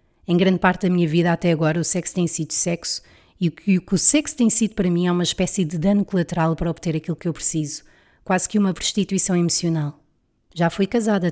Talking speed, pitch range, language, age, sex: 225 wpm, 160-190 Hz, Portuguese, 30-49, female